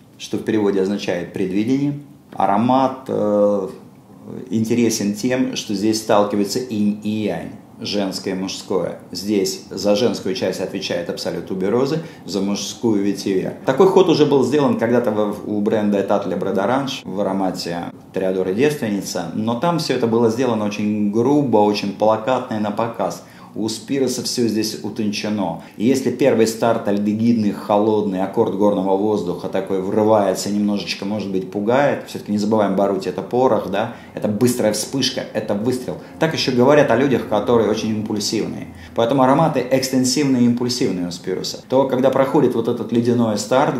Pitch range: 100-125 Hz